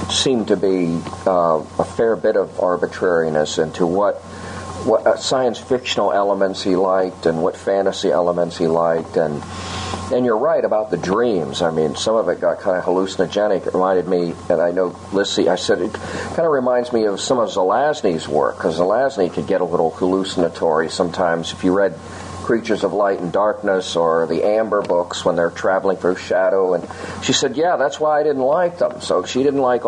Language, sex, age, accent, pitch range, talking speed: English, male, 40-59, American, 90-120 Hz, 195 wpm